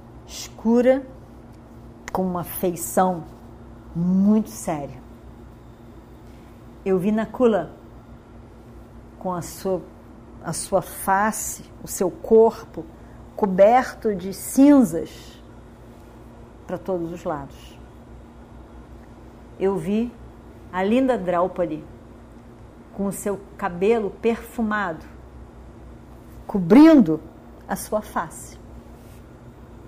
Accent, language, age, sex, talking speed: Brazilian, Portuguese, 40-59, female, 75 wpm